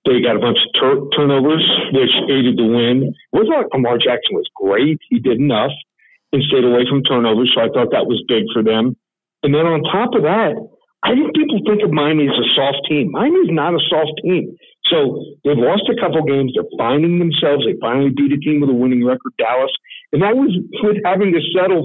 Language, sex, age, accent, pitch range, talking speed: English, male, 50-69, American, 145-200 Hz, 220 wpm